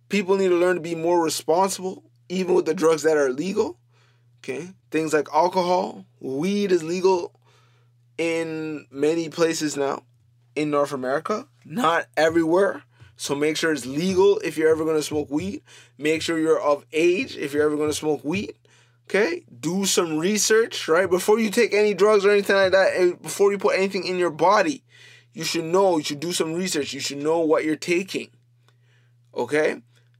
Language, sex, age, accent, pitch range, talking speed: English, male, 20-39, American, 145-195 Hz, 180 wpm